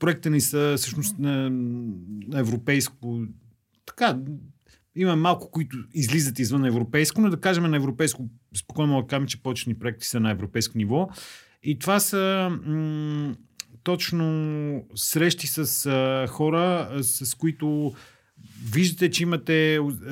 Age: 40-59